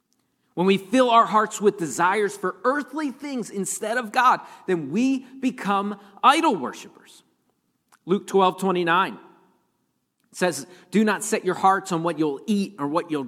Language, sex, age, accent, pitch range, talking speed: English, male, 40-59, American, 160-215 Hz, 155 wpm